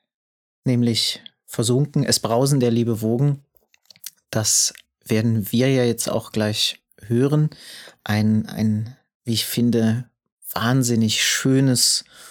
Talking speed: 105 wpm